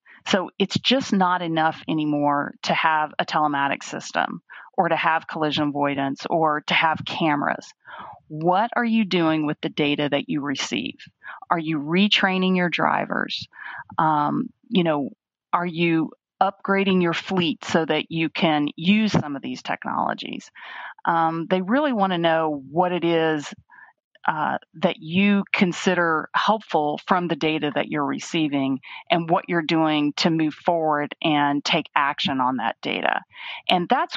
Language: English